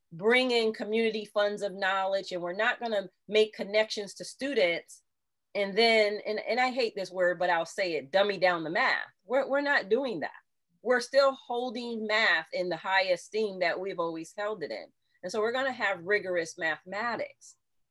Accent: American